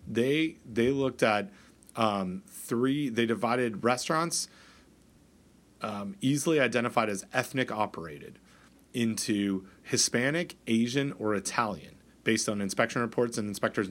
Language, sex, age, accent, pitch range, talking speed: English, male, 30-49, American, 100-130 Hz, 110 wpm